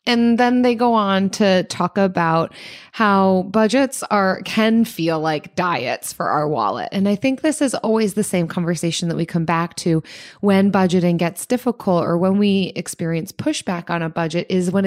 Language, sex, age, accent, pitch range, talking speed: English, female, 20-39, American, 170-210 Hz, 185 wpm